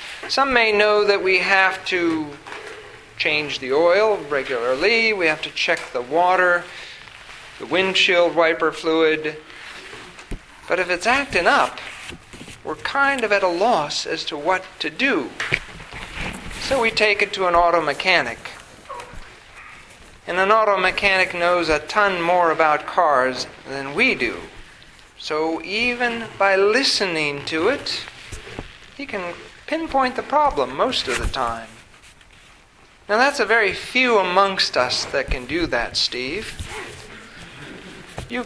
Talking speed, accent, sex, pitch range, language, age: 135 wpm, American, male, 175-260 Hz, English, 50-69